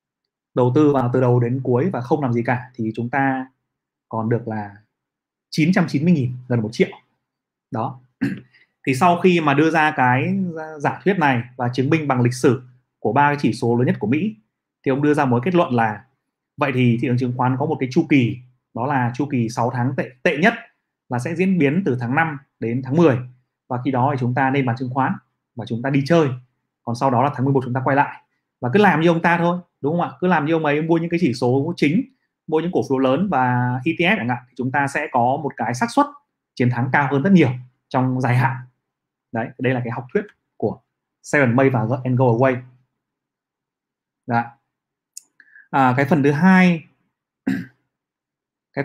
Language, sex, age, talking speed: Vietnamese, male, 20-39, 215 wpm